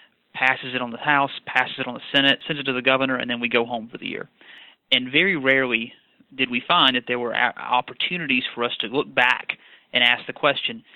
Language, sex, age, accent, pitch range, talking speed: English, male, 30-49, American, 120-140 Hz, 230 wpm